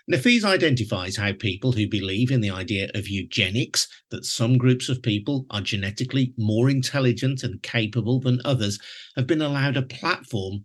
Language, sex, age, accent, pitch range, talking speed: English, male, 50-69, British, 110-140 Hz, 165 wpm